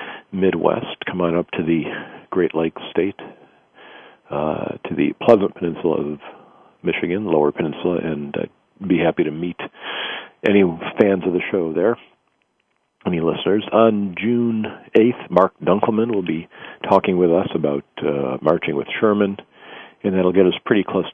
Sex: male